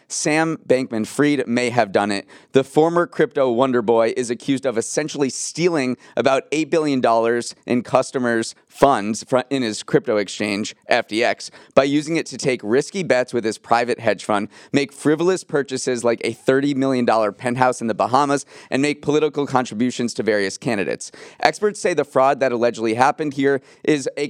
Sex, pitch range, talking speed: male, 120-145 Hz, 170 wpm